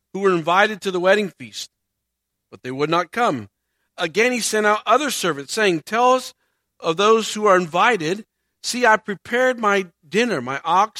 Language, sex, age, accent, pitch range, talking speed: English, male, 50-69, American, 145-215 Hz, 180 wpm